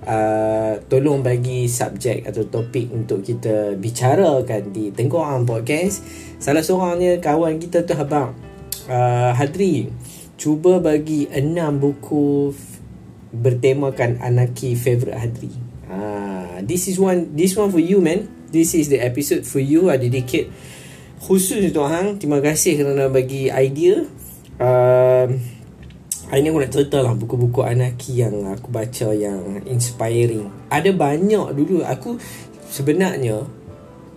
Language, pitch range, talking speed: Malay, 120-160 Hz, 135 wpm